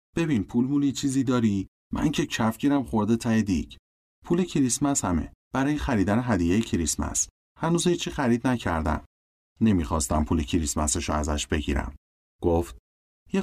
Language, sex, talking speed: Persian, male, 130 wpm